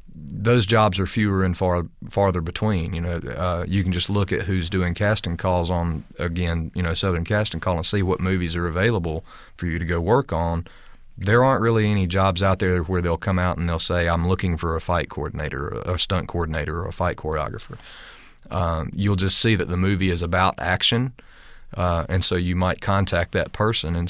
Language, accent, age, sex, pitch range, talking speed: English, American, 30-49, male, 85-95 Hz, 215 wpm